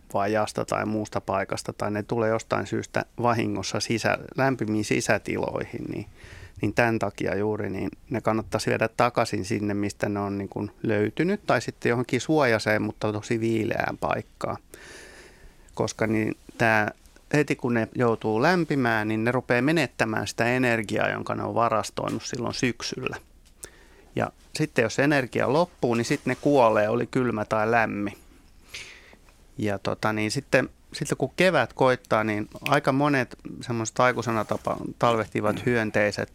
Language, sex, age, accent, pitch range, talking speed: Finnish, male, 30-49, native, 105-125 Hz, 145 wpm